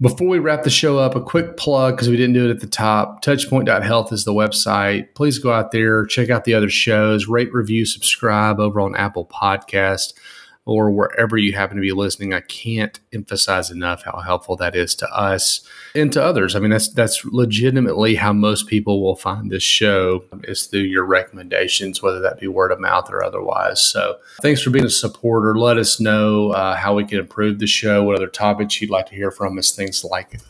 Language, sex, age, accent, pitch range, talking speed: English, male, 30-49, American, 100-120 Hz, 210 wpm